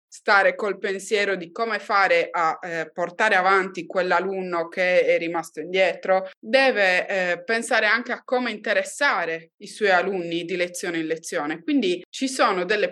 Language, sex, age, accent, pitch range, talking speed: Italian, female, 20-39, native, 175-225 Hz, 155 wpm